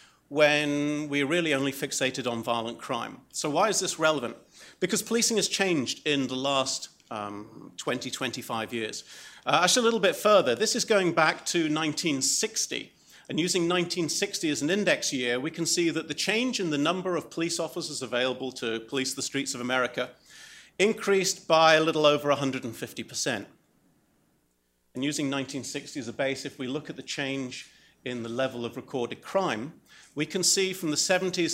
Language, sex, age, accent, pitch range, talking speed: English, male, 40-59, British, 130-170 Hz, 175 wpm